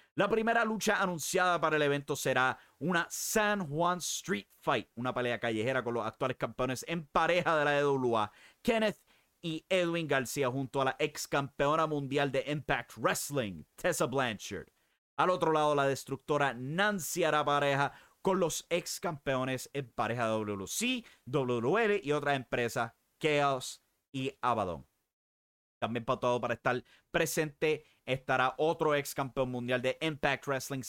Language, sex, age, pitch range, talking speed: English, male, 30-49, 120-155 Hz, 150 wpm